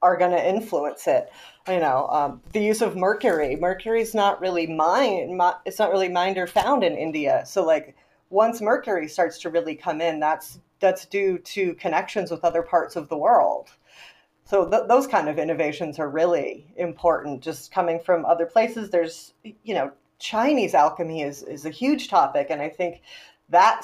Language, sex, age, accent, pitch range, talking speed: English, female, 30-49, American, 170-225 Hz, 185 wpm